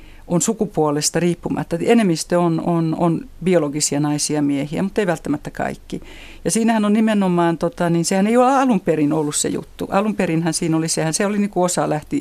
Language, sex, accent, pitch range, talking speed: Finnish, female, native, 150-185 Hz, 195 wpm